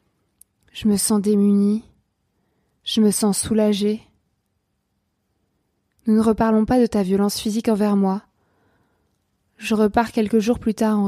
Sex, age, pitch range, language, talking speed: female, 20-39, 195-235 Hz, French, 135 wpm